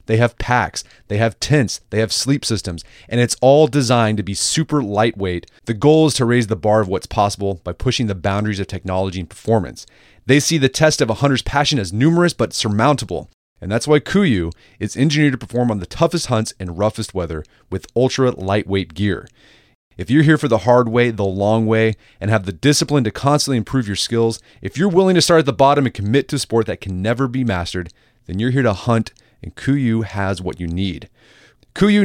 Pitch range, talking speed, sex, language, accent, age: 100-135 Hz, 215 wpm, male, English, American, 30-49